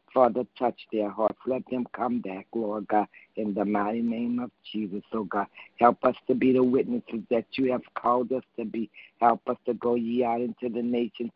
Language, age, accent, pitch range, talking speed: English, 60-79, American, 105-120 Hz, 210 wpm